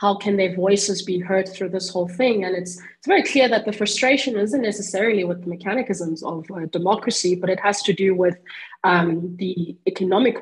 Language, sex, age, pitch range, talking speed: English, female, 20-39, 180-205 Hz, 195 wpm